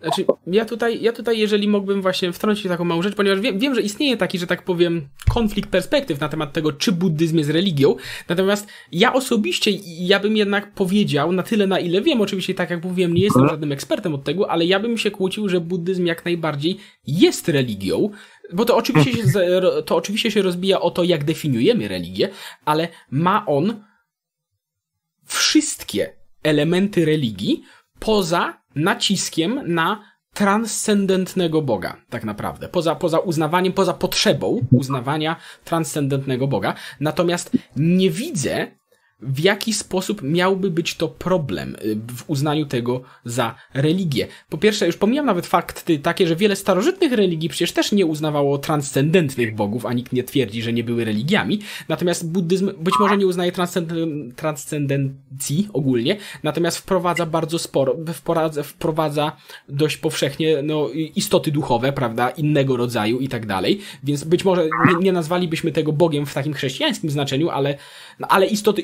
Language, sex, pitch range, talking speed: Polish, male, 150-195 Hz, 155 wpm